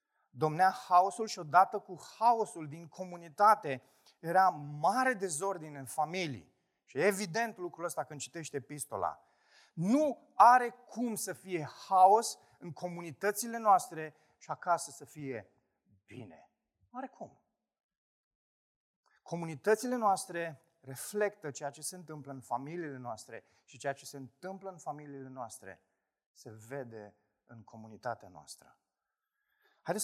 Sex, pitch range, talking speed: male, 120-180 Hz, 120 wpm